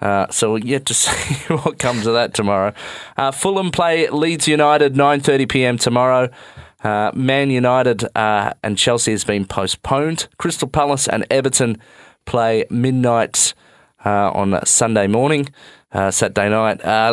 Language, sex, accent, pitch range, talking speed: English, male, Australian, 105-135 Hz, 145 wpm